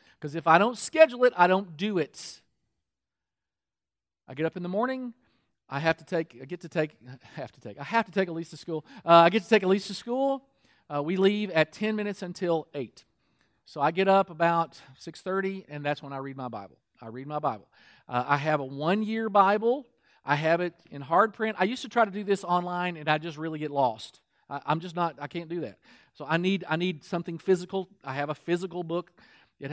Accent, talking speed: American, 235 wpm